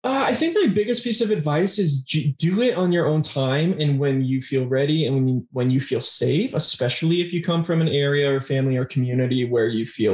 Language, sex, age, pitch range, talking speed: English, male, 20-39, 125-155 Hz, 235 wpm